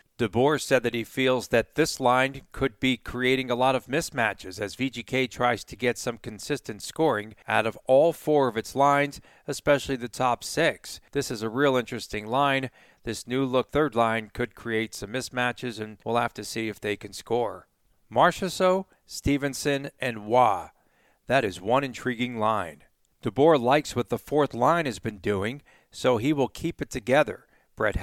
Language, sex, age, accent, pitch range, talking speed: English, male, 40-59, American, 115-140 Hz, 175 wpm